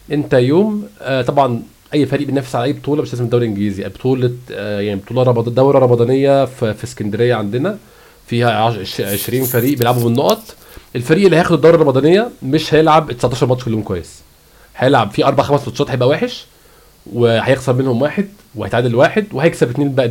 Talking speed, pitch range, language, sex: 150 wpm, 120-145 Hz, Arabic, male